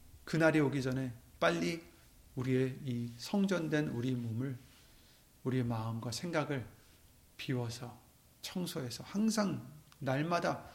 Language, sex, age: Korean, male, 40-59